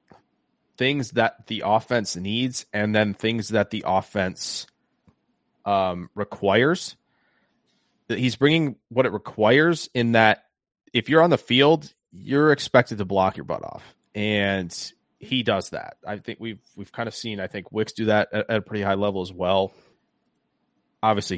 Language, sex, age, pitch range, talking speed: English, male, 20-39, 100-125 Hz, 165 wpm